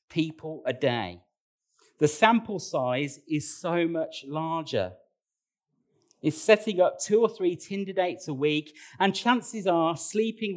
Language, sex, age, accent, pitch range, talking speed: English, male, 40-59, British, 140-190 Hz, 135 wpm